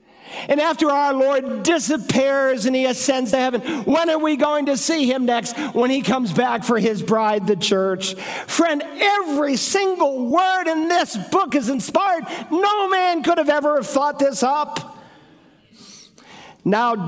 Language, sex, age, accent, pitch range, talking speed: English, male, 50-69, American, 220-275 Hz, 160 wpm